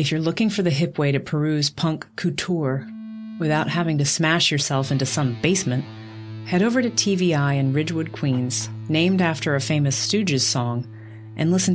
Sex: female